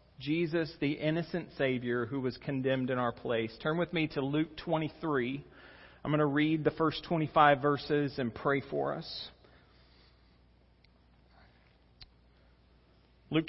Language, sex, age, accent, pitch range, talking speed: English, male, 40-59, American, 135-170 Hz, 130 wpm